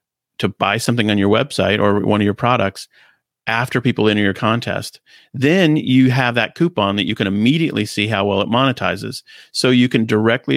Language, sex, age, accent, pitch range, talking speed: English, male, 40-59, American, 100-120 Hz, 195 wpm